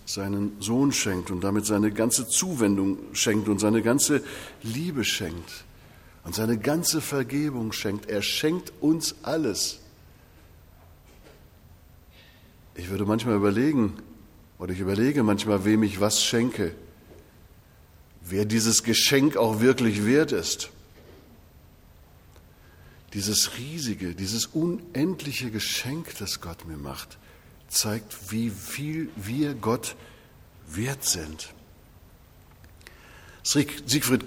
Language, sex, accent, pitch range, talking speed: German, male, German, 95-120 Hz, 105 wpm